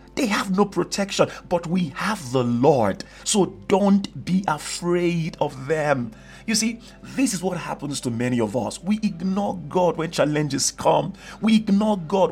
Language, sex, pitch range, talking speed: English, male, 145-200 Hz, 165 wpm